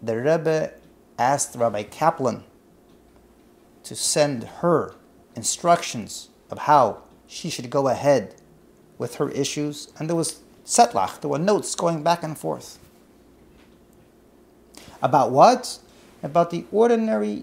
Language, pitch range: English, 135-180 Hz